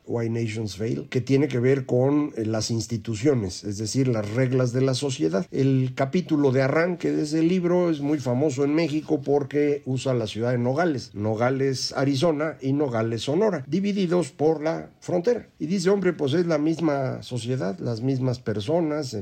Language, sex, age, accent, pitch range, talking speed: Spanish, male, 50-69, Mexican, 120-155 Hz, 170 wpm